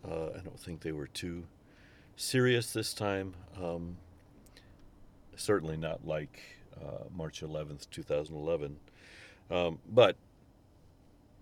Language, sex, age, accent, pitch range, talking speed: English, male, 50-69, American, 85-120 Hz, 115 wpm